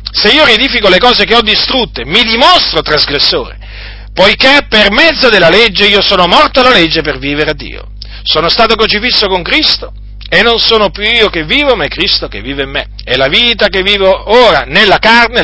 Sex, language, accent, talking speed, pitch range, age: male, Italian, native, 200 wpm, 170-235 Hz, 40-59